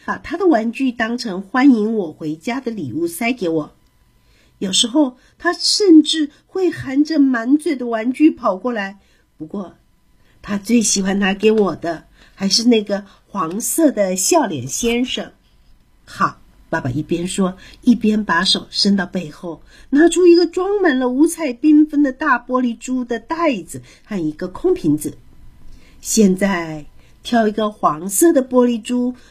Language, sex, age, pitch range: Chinese, female, 50-69, 180-275 Hz